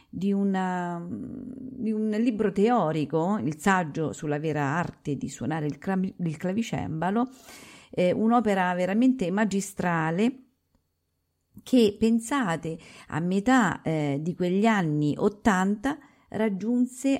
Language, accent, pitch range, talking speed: Italian, native, 155-220 Hz, 100 wpm